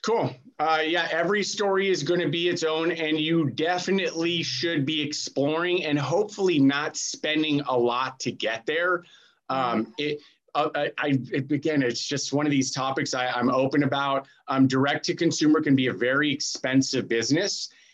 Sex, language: male, English